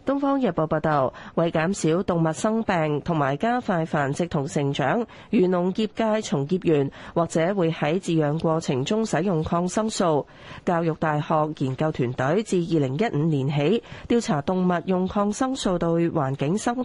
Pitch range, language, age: 155-210 Hz, Chinese, 30-49